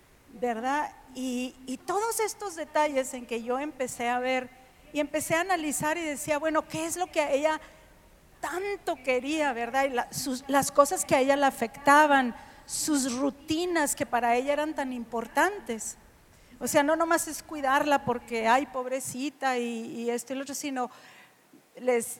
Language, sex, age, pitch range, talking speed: Spanish, female, 50-69, 245-295 Hz, 170 wpm